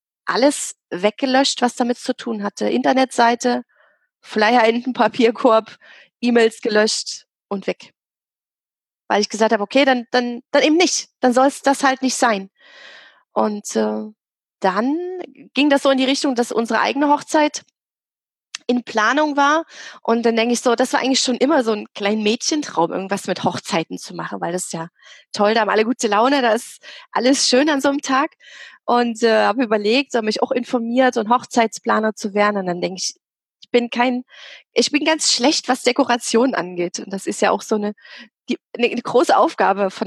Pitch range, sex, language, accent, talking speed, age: 220-270 Hz, female, German, German, 190 wpm, 30-49